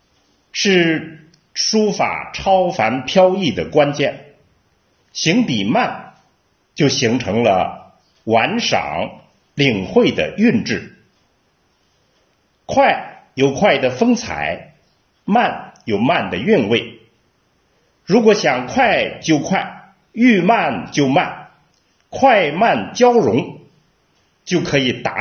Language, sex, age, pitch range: Chinese, male, 50-69, 130-210 Hz